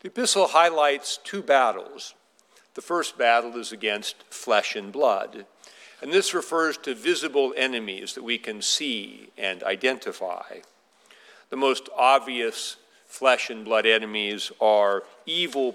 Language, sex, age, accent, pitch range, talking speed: English, male, 50-69, American, 110-175 Hz, 130 wpm